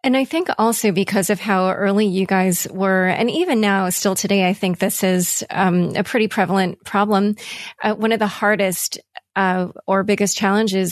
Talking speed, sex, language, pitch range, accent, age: 185 wpm, female, English, 190-220 Hz, American, 30-49